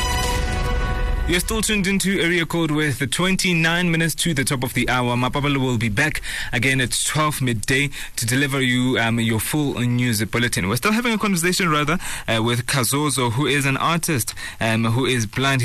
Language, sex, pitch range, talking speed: English, male, 115-150 Hz, 185 wpm